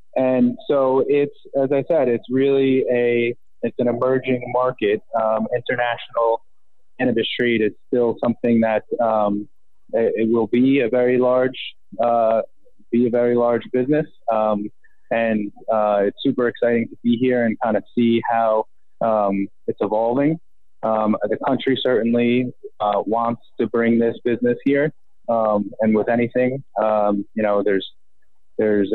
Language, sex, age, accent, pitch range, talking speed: English, male, 20-39, American, 110-125 Hz, 150 wpm